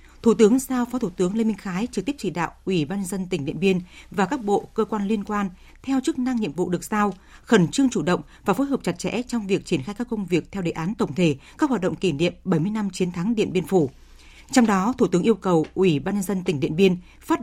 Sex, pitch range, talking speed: female, 180-230 Hz, 270 wpm